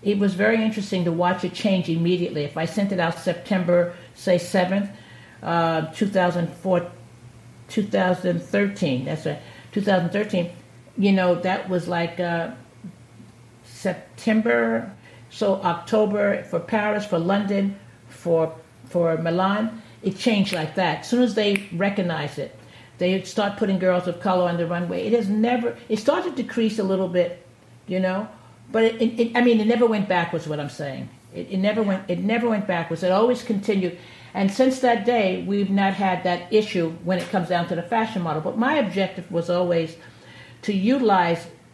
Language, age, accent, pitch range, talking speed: English, 50-69, American, 170-210 Hz, 170 wpm